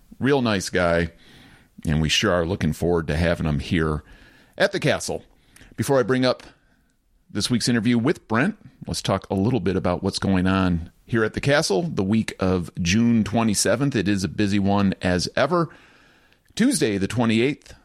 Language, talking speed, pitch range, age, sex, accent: English, 180 wpm, 85-110 Hz, 40-59, male, American